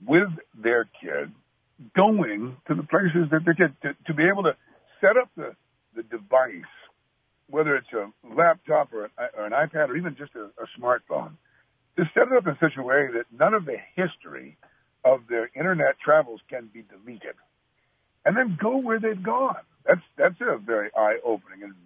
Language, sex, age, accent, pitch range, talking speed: English, male, 60-79, American, 130-190 Hz, 180 wpm